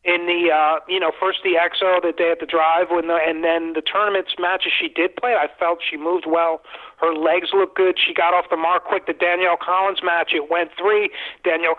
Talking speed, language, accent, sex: 235 wpm, English, American, male